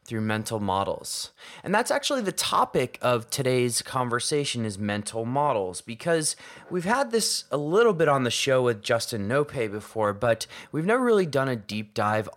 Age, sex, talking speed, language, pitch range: 20-39, male, 175 wpm, English, 105-140 Hz